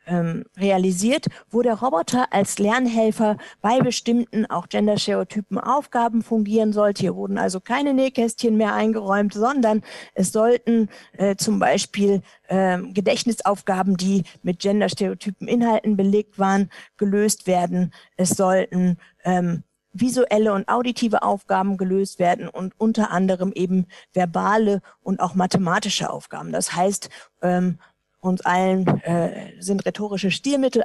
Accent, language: German, German